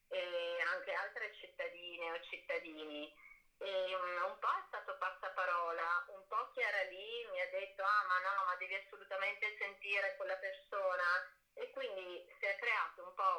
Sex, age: female, 30-49